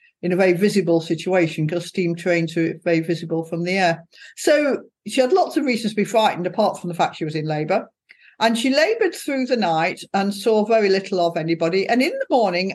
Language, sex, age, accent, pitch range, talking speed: English, female, 50-69, British, 180-270 Hz, 220 wpm